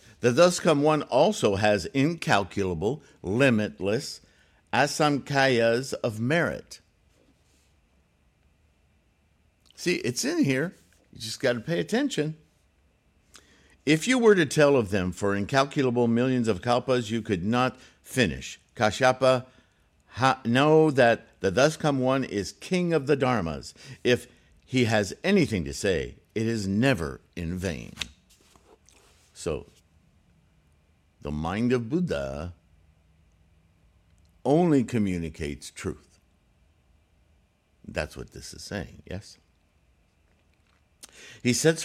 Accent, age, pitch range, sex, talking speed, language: American, 50-69, 80-130 Hz, male, 110 wpm, English